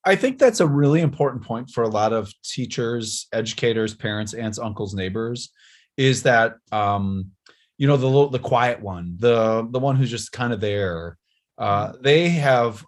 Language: English